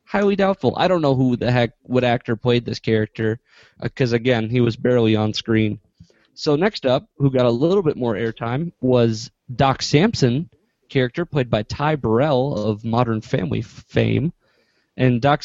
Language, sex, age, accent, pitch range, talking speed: English, male, 20-39, American, 125-170 Hz, 175 wpm